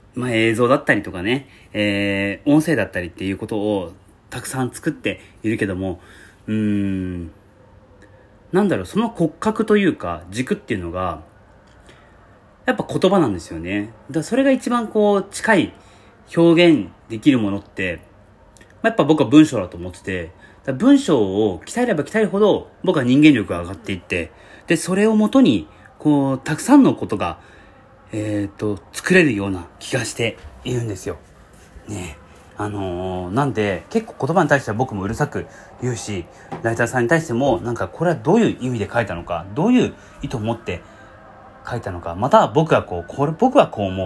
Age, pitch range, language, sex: 30-49, 100-155 Hz, Japanese, male